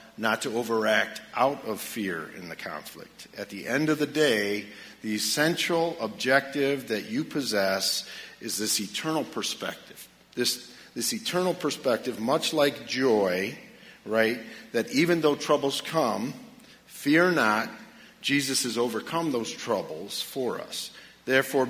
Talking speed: 135 wpm